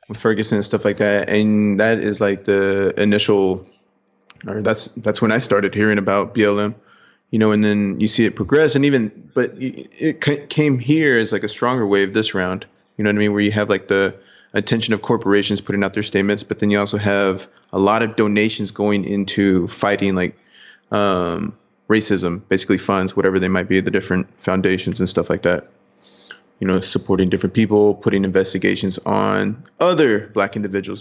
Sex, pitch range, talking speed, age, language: male, 100-120 Hz, 190 wpm, 20-39, English